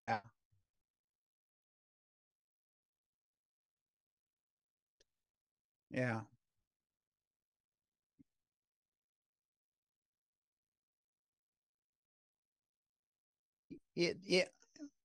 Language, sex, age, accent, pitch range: English, male, 60-79, American, 105-125 Hz